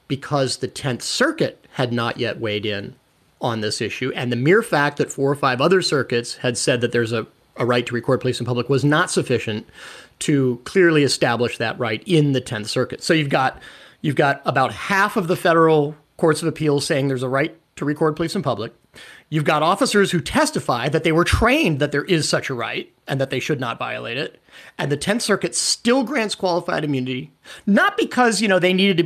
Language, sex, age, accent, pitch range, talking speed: English, male, 30-49, American, 130-175 Hz, 215 wpm